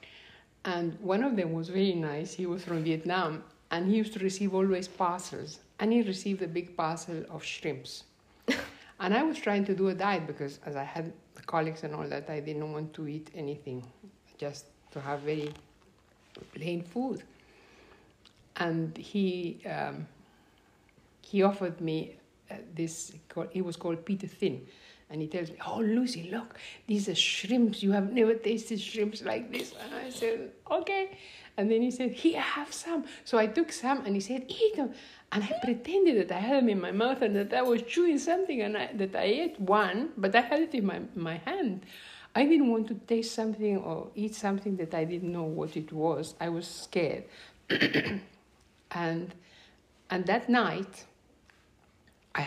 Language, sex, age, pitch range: English, female, 60-79, 165-225 Hz